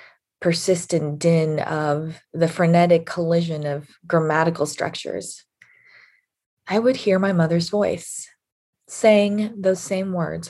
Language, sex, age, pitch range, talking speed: English, female, 20-39, 170-210 Hz, 110 wpm